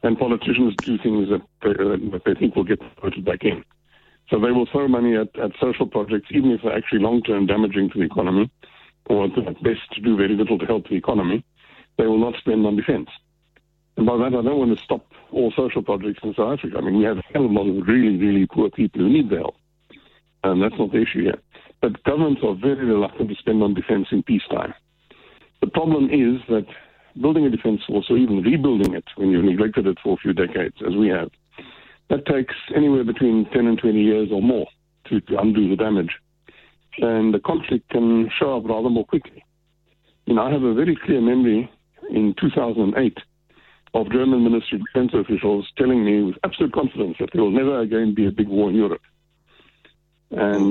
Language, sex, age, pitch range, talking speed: English, male, 60-79, 105-130 Hz, 210 wpm